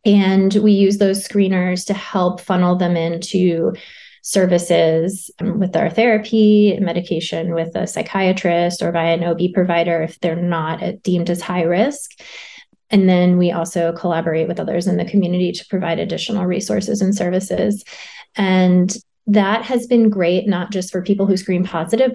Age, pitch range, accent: 20-39, 175-210 Hz, American